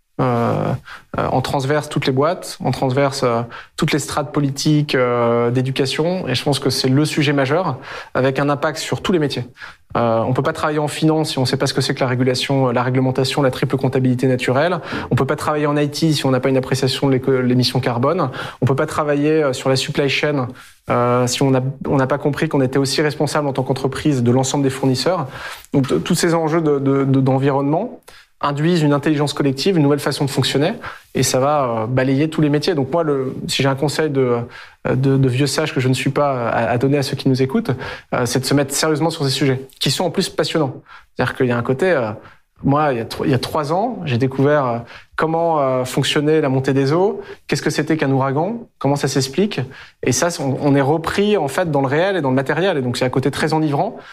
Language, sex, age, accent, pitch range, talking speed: French, male, 20-39, French, 130-155 Hz, 225 wpm